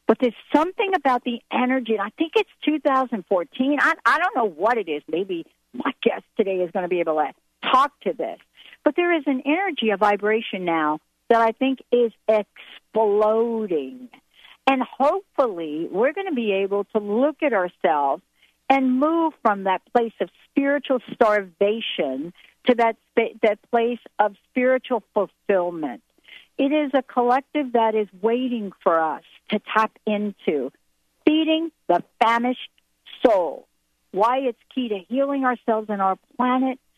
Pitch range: 210-270 Hz